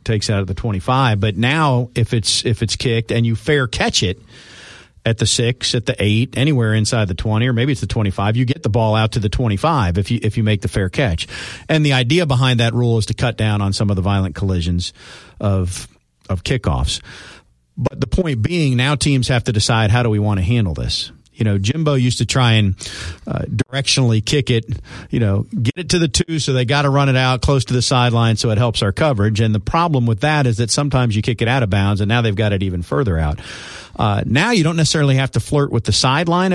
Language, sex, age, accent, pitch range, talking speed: English, male, 50-69, American, 105-135 Hz, 245 wpm